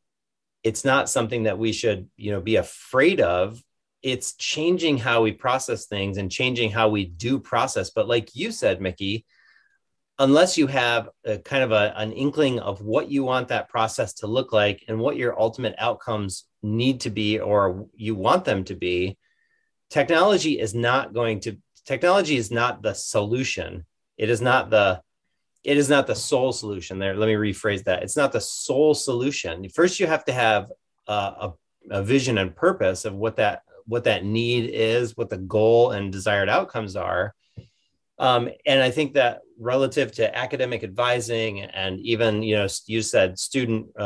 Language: English